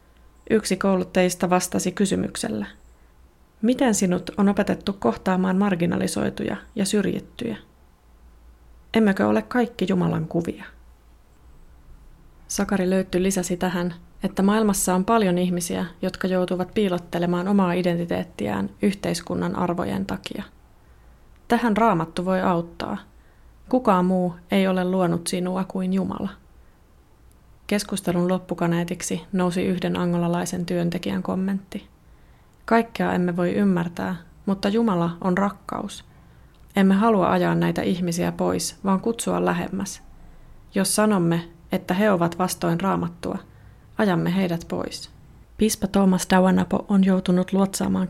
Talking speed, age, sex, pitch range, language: 105 wpm, 20-39, female, 170-195 Hz, Finnish